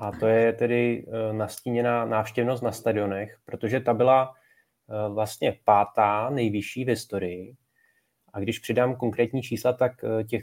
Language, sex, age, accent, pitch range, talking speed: Czech, male, 20-39, native, 105-125 Hz, 130 wpm